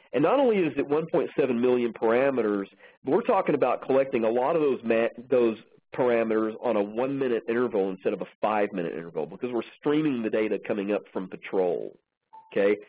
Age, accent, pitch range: 40-59, American, 115-175 Hz